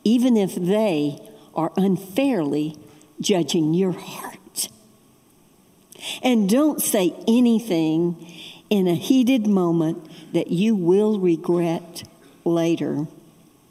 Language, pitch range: English, 175-260 Hz